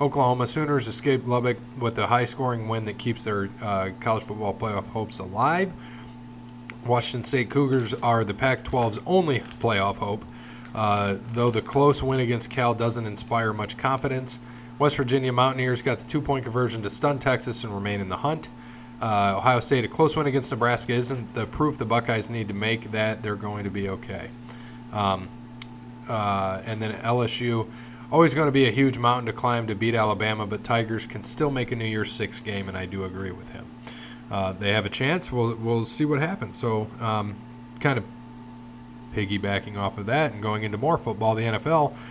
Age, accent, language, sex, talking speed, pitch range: 20-39, American, English, male, 190 wpm, 110-125 Hz